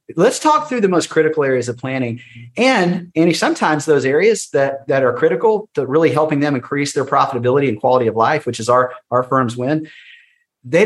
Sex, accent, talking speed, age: male, American, 200 wpm, 40-59